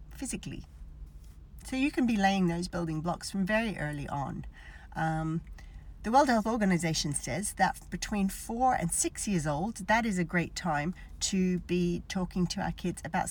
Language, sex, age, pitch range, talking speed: English, female, 40-59, 155-195 Hz, 170 wpm